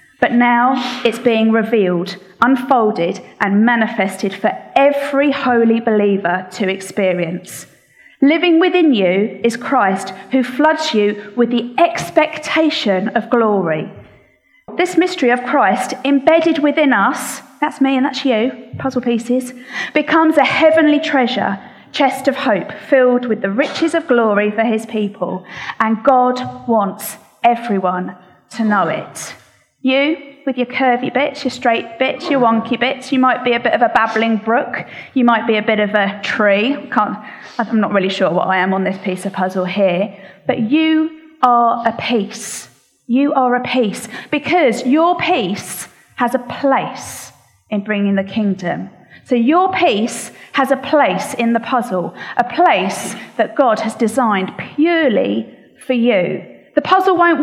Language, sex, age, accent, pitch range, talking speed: English, female, 40-59, British, 210-280 Hz, 150 wpm